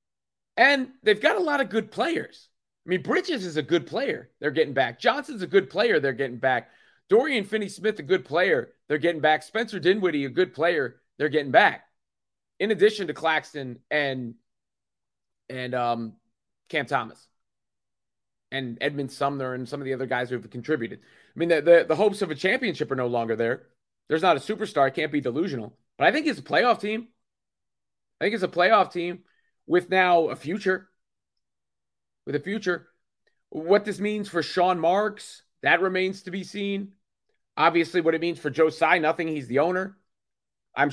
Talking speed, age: 185 wpm, 30-49